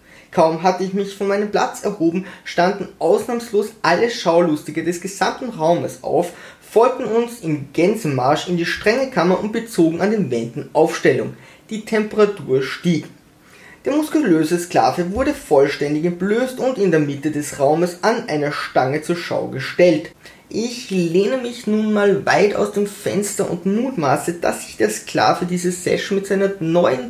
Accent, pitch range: German, 160-215 Hz